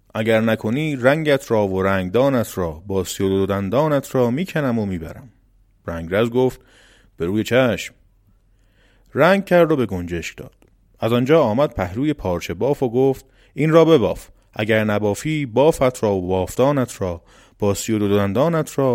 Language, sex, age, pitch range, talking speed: Persian, male, 30-49, 95-130 Hz, 150 wpm